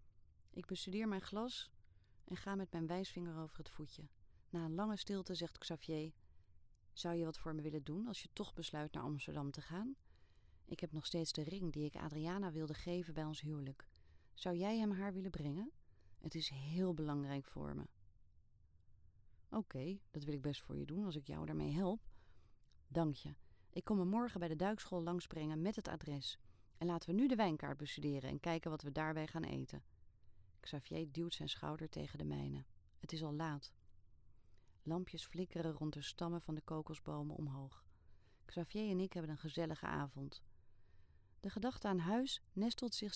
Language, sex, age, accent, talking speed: Dutch, female, 30-49, Dutch, 185 wpm